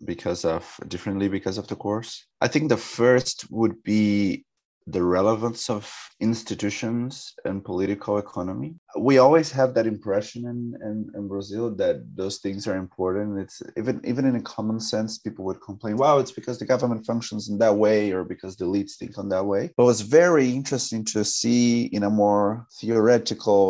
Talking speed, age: 180 wpm, 30-49